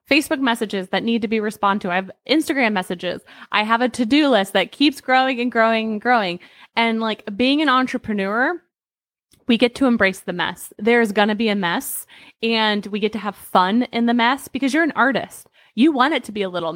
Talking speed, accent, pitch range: 220 wpm, American, 200-245 Hz